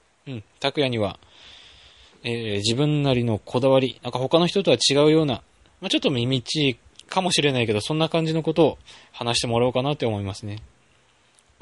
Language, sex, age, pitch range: Japanese, male, 20-39, 110-150 Hz